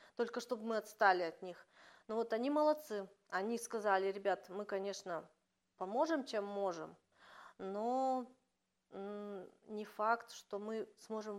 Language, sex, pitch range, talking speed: Russian, female, 185-240 Hz, 125 wpm